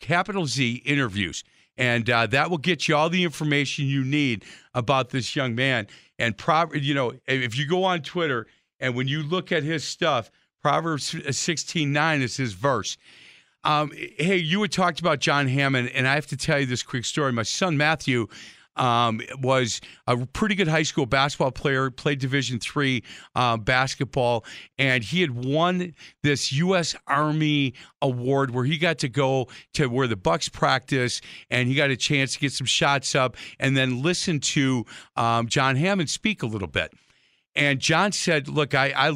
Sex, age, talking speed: male, 40-59, 180 wpm